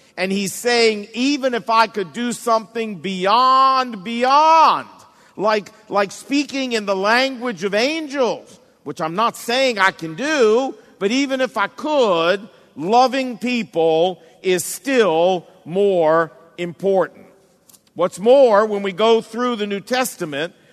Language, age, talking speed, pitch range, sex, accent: English, 50-69, 135 wpm, 175-240 Hz, male, American